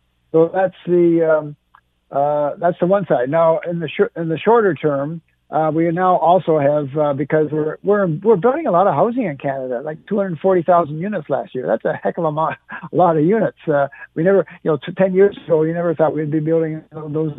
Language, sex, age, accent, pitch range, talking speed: English, male, 60-79, American, 150-175 Hz, 230 wpm